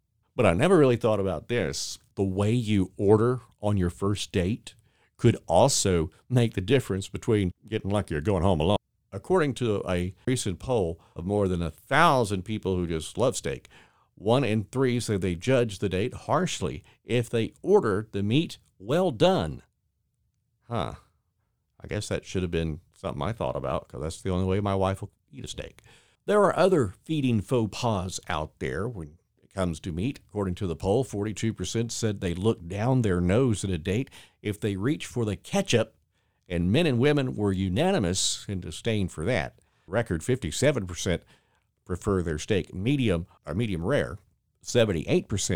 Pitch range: 90-120 Hz